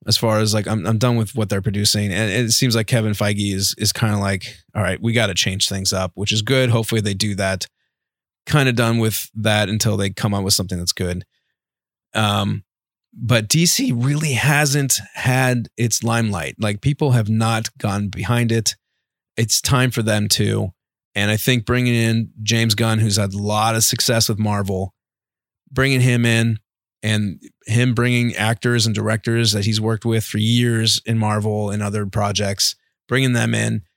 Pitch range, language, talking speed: 105-115 Hz, English, 190 wpm